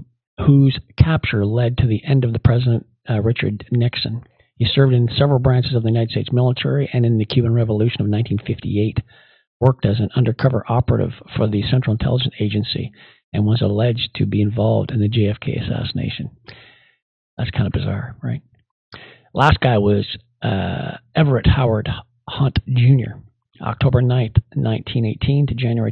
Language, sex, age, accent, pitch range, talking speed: English, male, 50-69, American, 115-135 Hz, 155 wpm